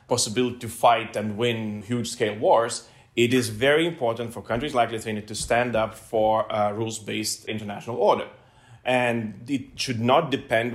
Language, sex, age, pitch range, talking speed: English, male, 30-49, 110-135 Hz, 155 wpm